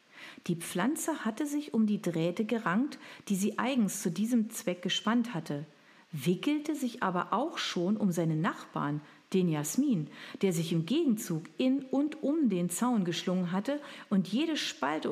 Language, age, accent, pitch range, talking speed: German, 50-69, German, 170-240 Hz, 160 wpm